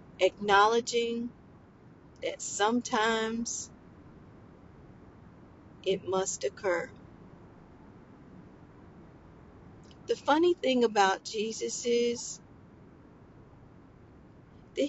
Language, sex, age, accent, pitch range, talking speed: English, female, 50-69, American, 195-270 Hz, 50 wpm